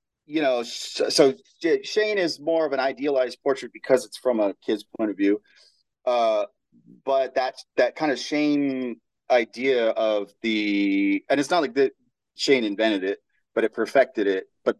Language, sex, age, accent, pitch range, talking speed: English, male, 30-49, American, 105-145 Hz, 165 wpm